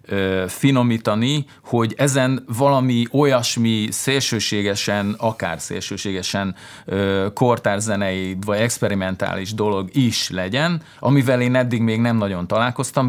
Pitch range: 100-130 Hz